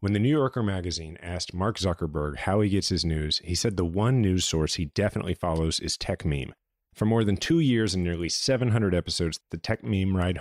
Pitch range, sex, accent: 85-110 Hz, male, American